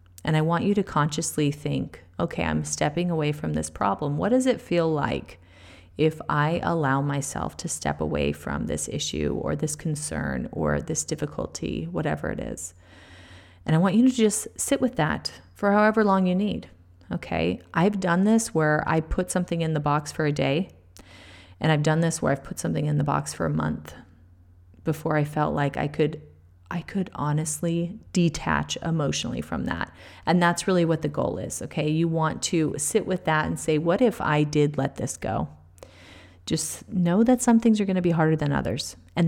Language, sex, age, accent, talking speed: English, female, 30-49, American, 195 wpm